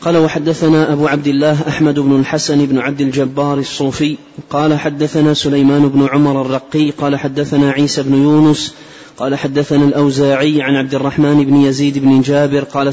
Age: 30-49